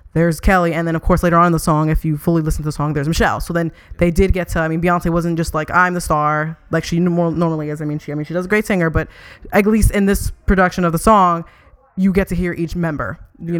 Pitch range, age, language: 155-180 Hz, 20-39, English